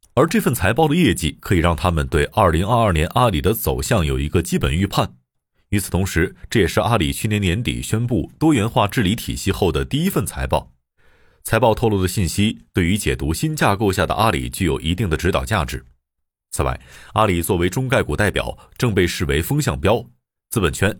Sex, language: male, Chinese